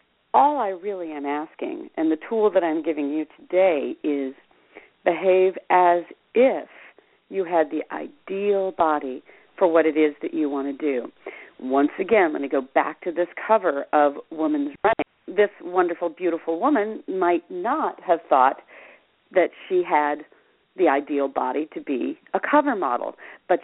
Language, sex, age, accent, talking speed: English, female, 50-69, American, 160 wpm